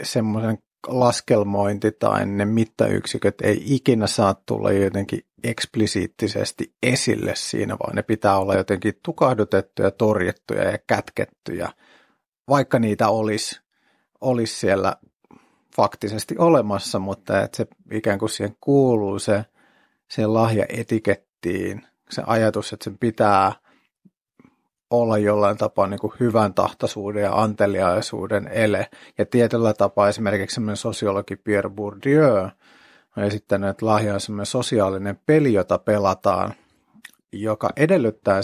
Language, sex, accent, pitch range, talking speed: Finnish, male, native, 100-115 Hz, 110 wpm